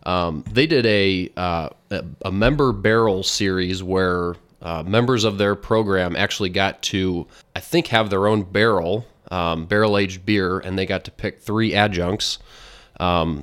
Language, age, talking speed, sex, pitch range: English, 30-49, 160 wpm, male, 90-110 Hz